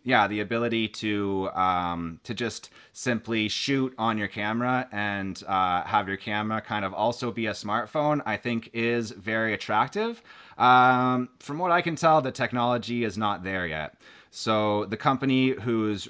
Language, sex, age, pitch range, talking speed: English, male, 30-49, 95-120 Hz, 165 wpm